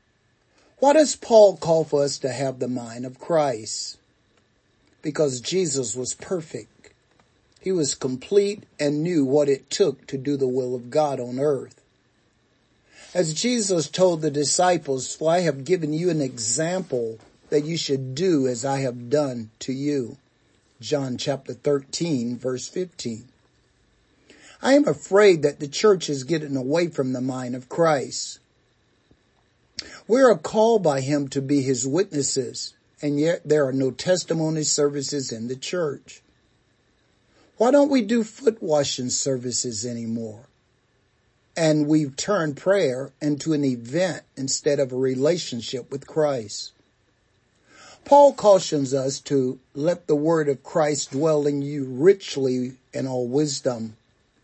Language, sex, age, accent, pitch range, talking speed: English, male, 50-69, American, 130-160 Hz, 140 wpm